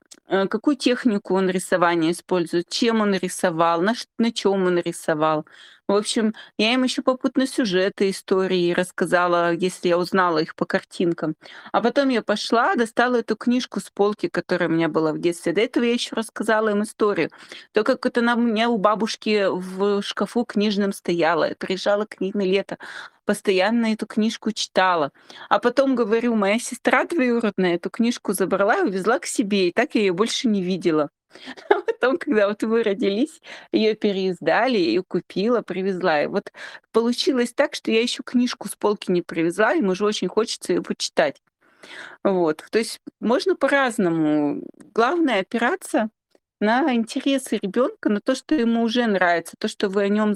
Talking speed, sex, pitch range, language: 170 wpm, female, 185-240 Hz, Russian